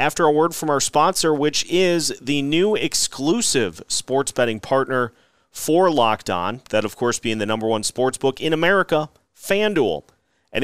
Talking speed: 170 wpm